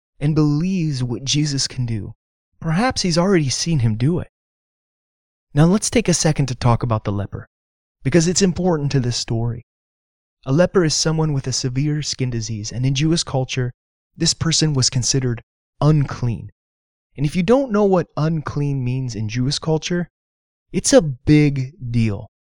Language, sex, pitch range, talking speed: English, male, 110-160 Hz, 165 wpm